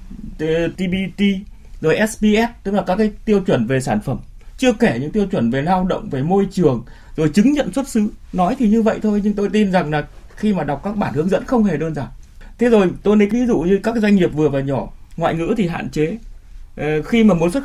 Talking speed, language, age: 260 wpm, Vietnamese, 20-39